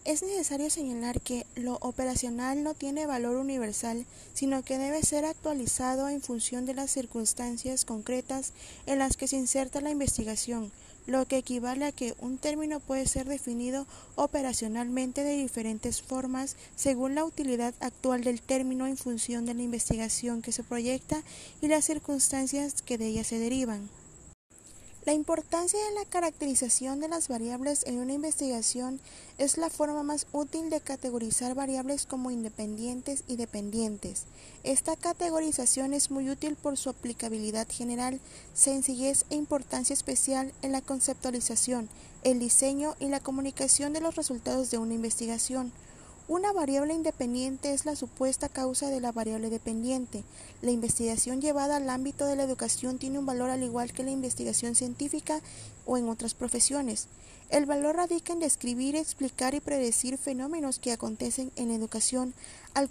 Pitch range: 245-285 Hz